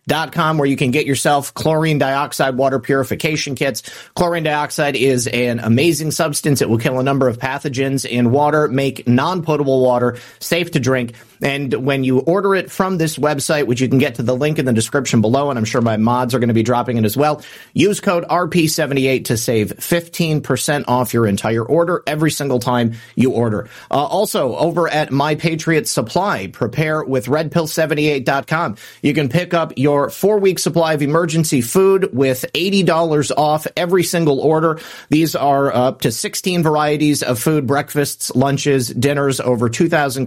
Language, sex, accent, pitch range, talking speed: English, male, American, 130-160 Hz, 175 wpm